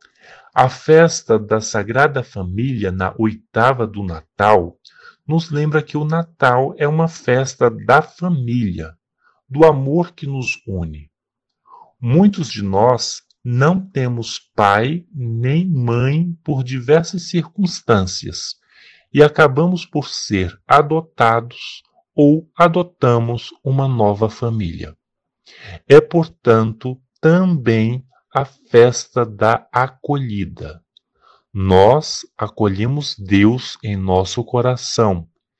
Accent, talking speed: Brazilian, 100 wpm